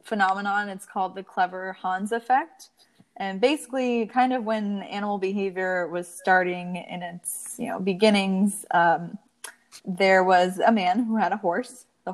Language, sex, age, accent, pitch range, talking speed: English, female, 20-39, American, 190-240 Hz, 155 wpm